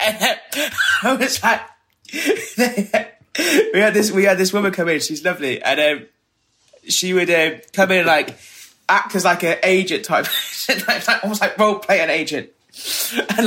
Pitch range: 135-215 Hz